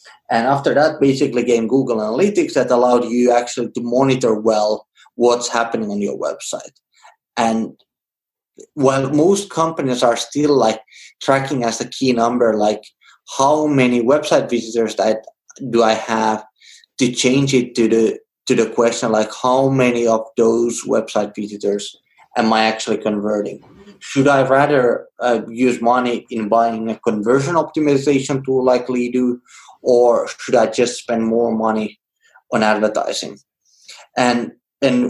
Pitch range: 115-135 Hz